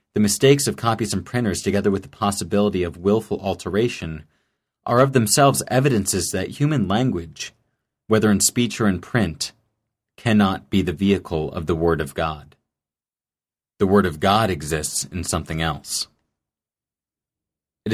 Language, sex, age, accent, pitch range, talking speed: English, male, 30-49, American, 90-110 Hz, 145 wpm